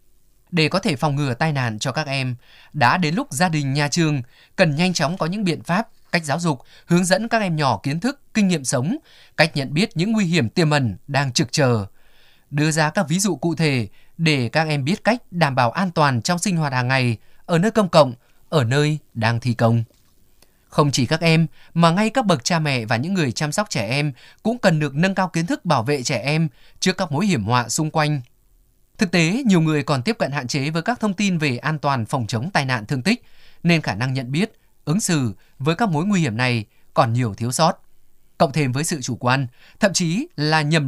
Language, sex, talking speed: Vietnamese, male, 240 wpm